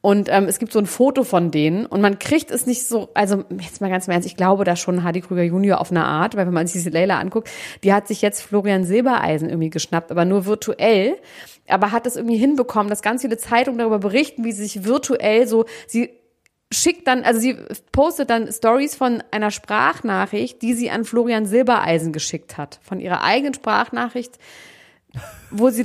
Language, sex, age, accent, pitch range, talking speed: German, female, 30-49, German, 175-235 Hz, 205 wpm